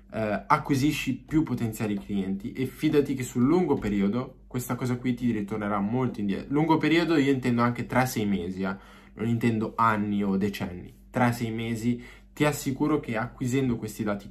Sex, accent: male, native